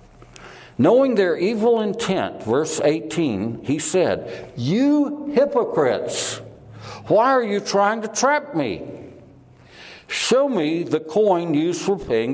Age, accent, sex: 60-79, American, male